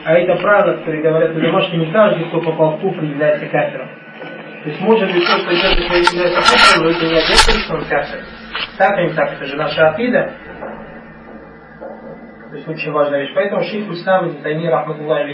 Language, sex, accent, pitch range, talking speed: Russian, male, native, 160-210 Hz, 175 wpm